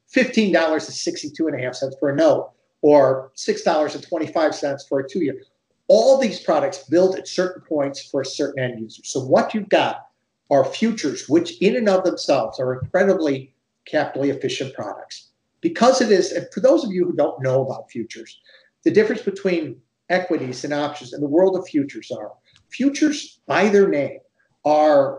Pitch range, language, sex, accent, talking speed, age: 140-195 Hz, English, male, American, 185 wpm, 50-69